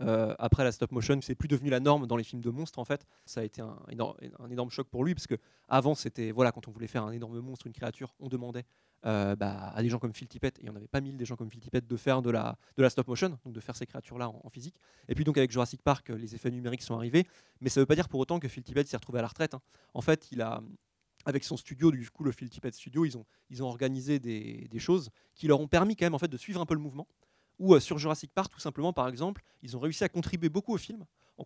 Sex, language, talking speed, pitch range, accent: male, French, 295 wpm, 120-160 Hz, French